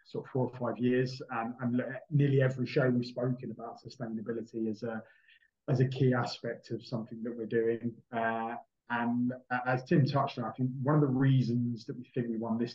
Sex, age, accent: male, 20-39, British